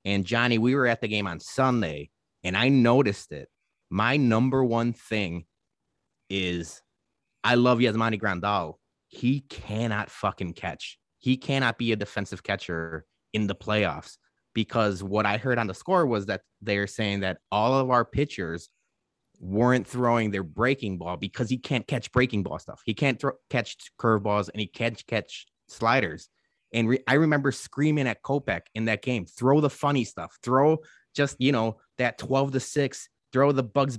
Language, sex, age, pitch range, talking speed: English, male, 30-49, 105-135 Hz, 170 wpm